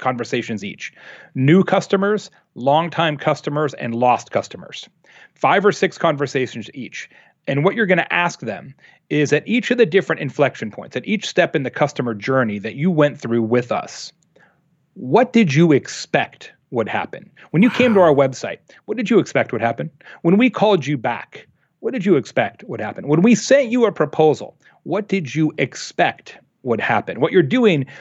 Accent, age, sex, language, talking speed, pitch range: American, 40-59, male, English, 185 wpm, 135-195 Hz